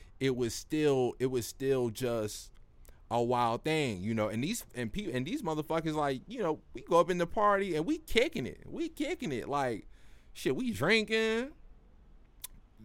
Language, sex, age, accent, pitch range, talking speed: English, male, 20-39, American, 95-150 Hz, 180 wpm